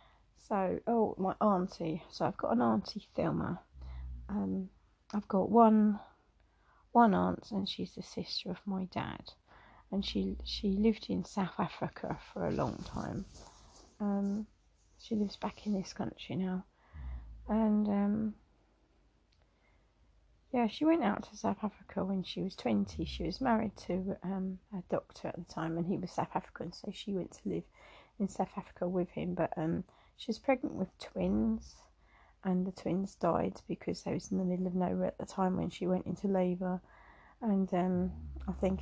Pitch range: 180-215 Hz